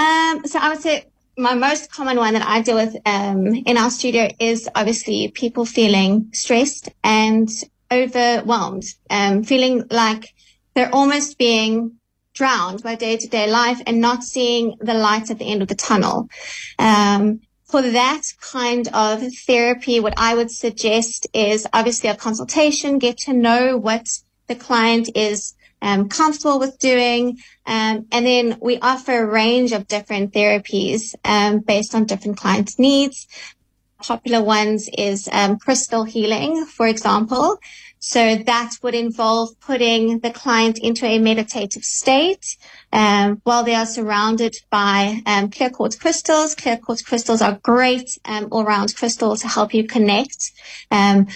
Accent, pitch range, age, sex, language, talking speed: British, 215-245 Hz, 30-49, female, English, 150 wpm